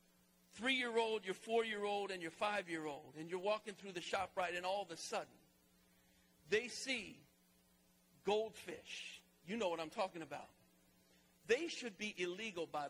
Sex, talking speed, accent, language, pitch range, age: male, 175 wpm, American, English, 185-275 Hz, 50-69